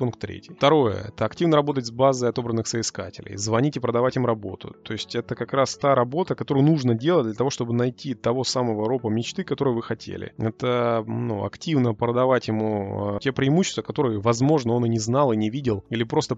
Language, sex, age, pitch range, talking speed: Russian, male, 20-39, 110-130 Hz, 200 wpm